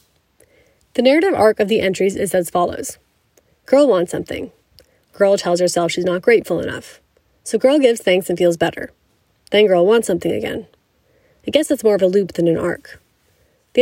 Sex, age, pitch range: female, 20-39, 175-230 Hz